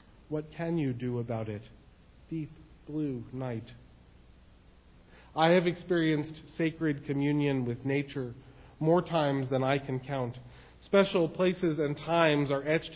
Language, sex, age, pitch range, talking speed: English, male, 40-59, 130-170 Hz, 130 wpm